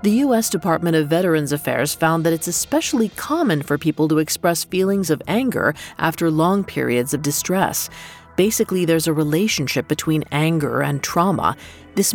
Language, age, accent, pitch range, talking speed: English, 40-59, American, 155-205 Hz, 160 wpm